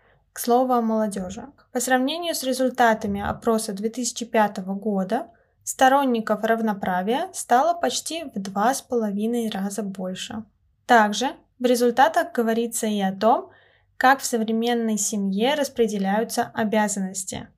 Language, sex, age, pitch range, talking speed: Russian, female, 10-29, 215-260 Hz, 110 wpm